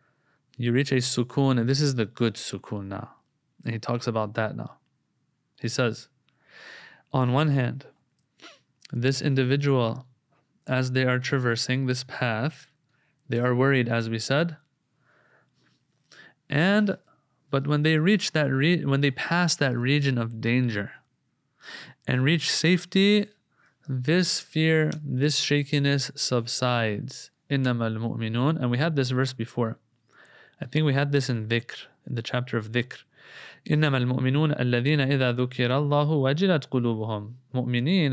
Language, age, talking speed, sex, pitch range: English, 20-39, 125 wpm, male, 125-150 Hz